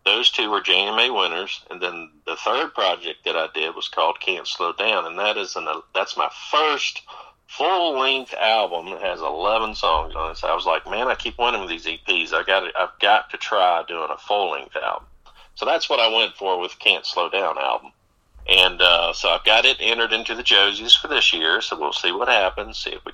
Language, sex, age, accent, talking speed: English, male, 50-69, American, 235 wpm